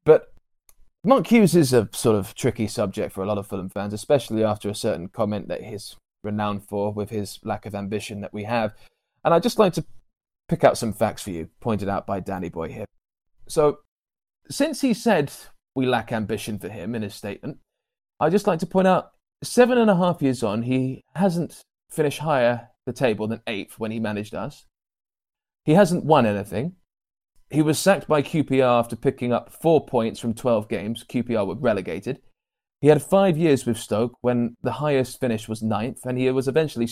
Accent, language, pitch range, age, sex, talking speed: British, English, 110-155 Hz, 20-39, male, 195 wpm